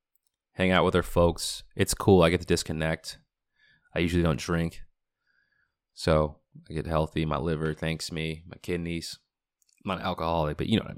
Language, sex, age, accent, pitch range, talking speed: English, male, 30-49, American, 80-105 Hz, 185 wpm